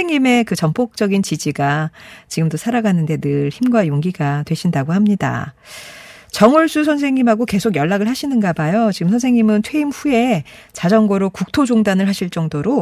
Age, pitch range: 40-59, 155-220 Hz